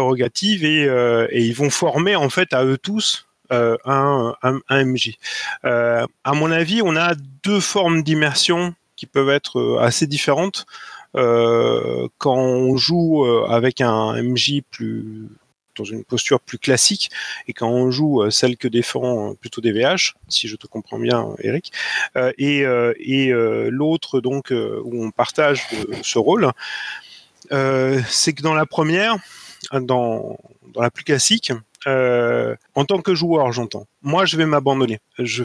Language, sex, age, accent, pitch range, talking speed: French, male, 30-49, French, 125-165 Hz, 160 wpm